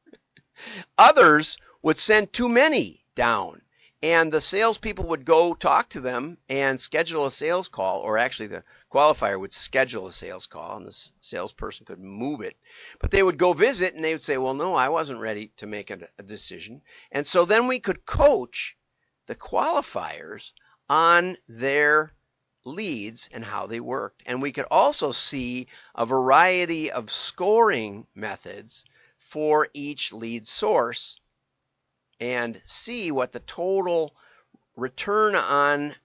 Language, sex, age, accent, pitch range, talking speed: English, male, 50-69, American, 120-180 Hz, 145 wpm